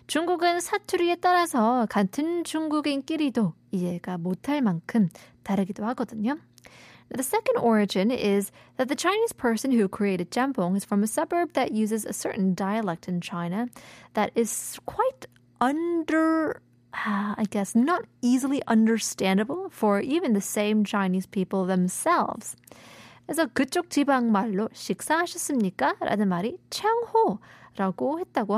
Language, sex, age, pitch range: Korean, female, 20-39, 190-290 Hz